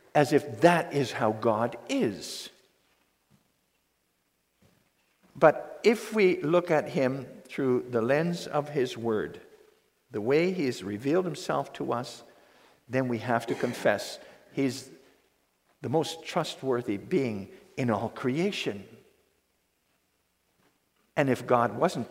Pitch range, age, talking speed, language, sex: 115-180 Hz, 50-69, 120 wpm, English, male